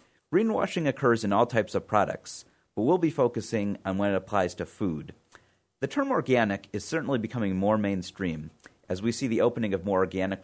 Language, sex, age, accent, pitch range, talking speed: English, male, 40-59, American, 95-130 Hz, 190 wpm